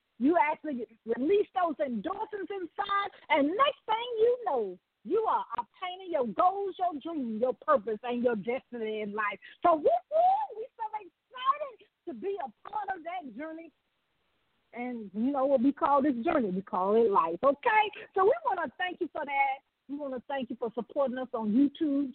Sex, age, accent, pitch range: female, 40-59, American, 245-370 Hz